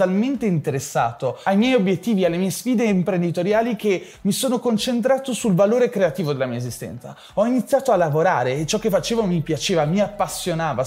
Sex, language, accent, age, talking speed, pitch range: male, Italian, native, 20-39, 165 wpm, 155-215 Hz